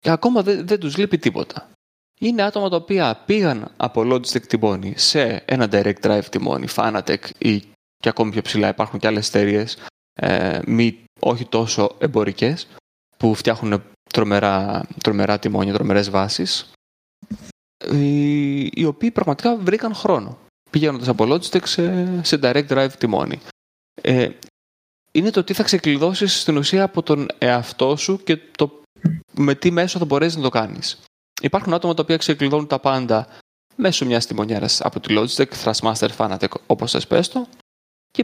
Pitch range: 110-170 Hz